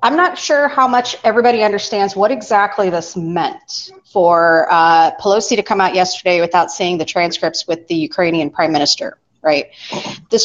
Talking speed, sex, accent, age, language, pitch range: 165 wpm, female, American, 30-49, English, 180-255 Hz